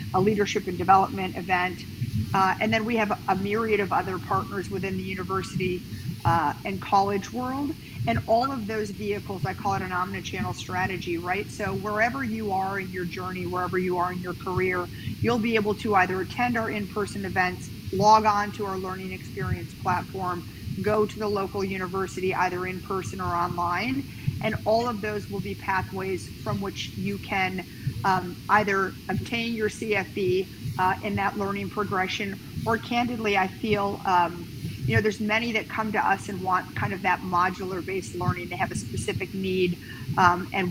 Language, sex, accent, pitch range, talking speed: English, female, American, 180-210 Hz, 180 wpm